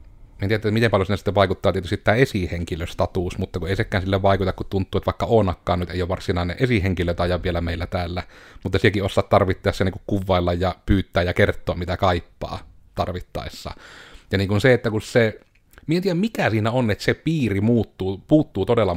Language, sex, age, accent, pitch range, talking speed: Finnish, male, 30-49, native, 90-110 Hz, 195 wpm